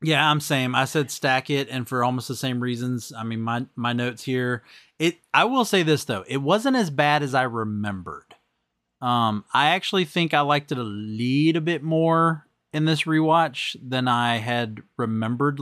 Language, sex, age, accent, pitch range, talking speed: English, male, 30-49, American, 115-150 Hz, 190 wpm